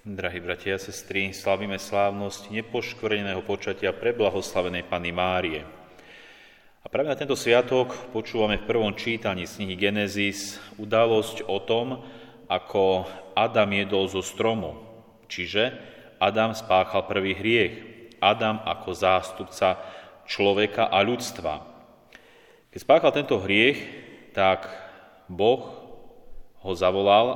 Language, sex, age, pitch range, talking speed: Slovak, male, 30-49, 95-115 Hz, 110 wpm